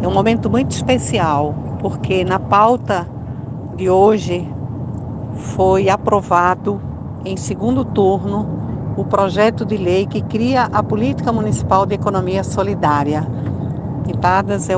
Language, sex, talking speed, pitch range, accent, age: Portuguese, female, 120 wpm, 125-205 Hz, Brazilian, 50-69